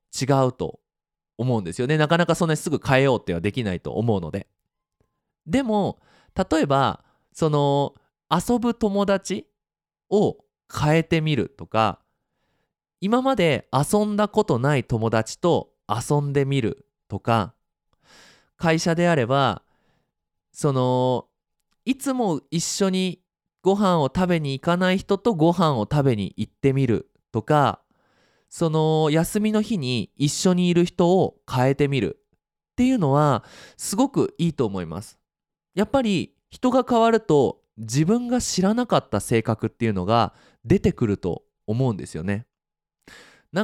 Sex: male